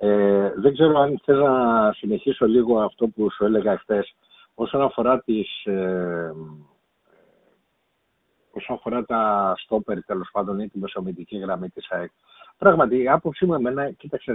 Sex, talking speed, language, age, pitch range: male, 135 wpm, Greek, 50-69, 115-160 Hz